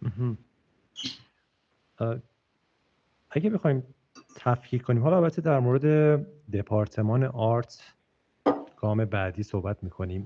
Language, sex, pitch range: Persian, male, 105-130 Hz